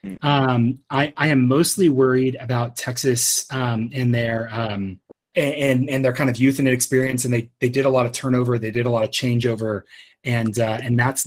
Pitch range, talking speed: 120-145 Hz, 200 wpm